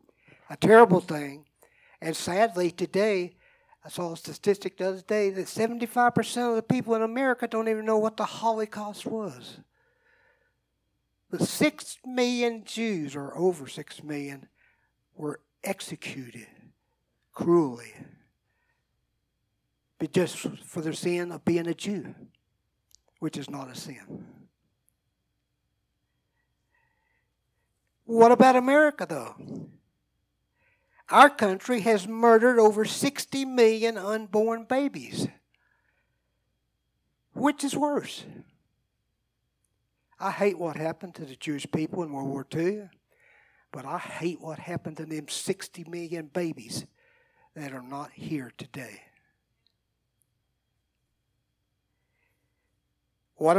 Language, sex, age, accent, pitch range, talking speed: English, male, 60-79, American, 160-230 Hz, 105 wpm